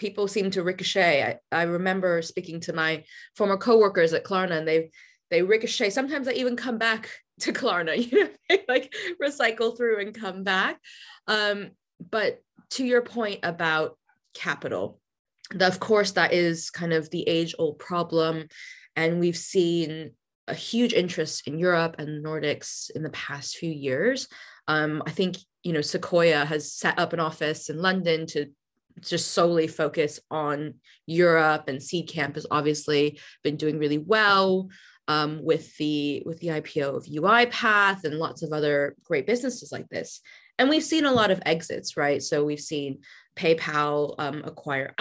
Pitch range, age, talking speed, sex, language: 155-220 Hz, 20-39, 165 wpm, female, English